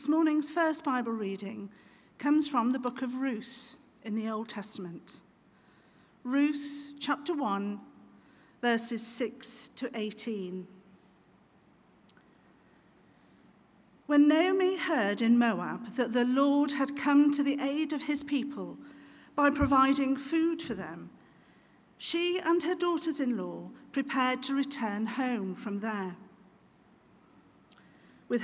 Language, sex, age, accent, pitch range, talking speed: English, female, 50-69, British, 225-295 Hz, 115 wpm